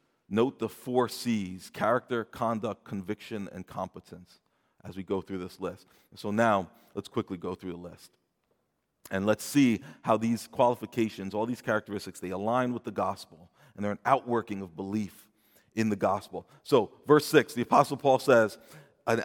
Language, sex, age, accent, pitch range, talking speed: English, male, 40-59, American, 110-140 Hz, 170 wpm